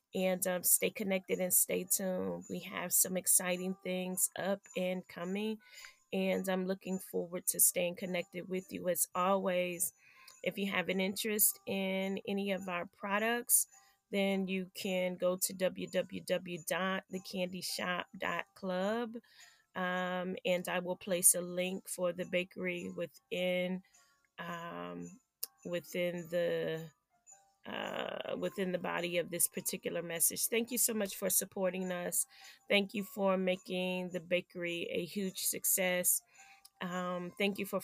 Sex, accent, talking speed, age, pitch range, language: female, American, 135 wpm, 30-49, 175-195 Hz, English